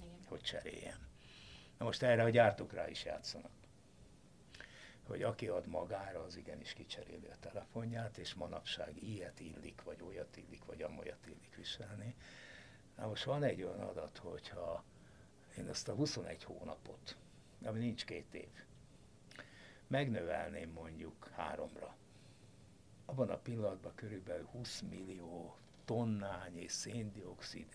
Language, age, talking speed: Hungarian, 60-79, 125 wpm